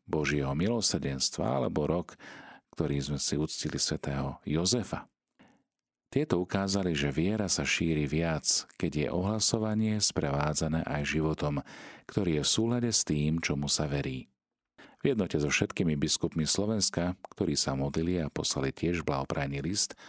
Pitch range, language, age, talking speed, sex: 75-90 Hz, Slovak, 40-59, 135 wpm, male